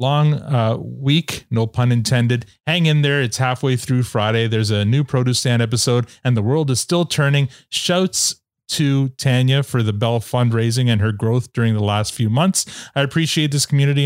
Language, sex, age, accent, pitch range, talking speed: English, male, 30-49, American, 115-145 Hz, 190 wpm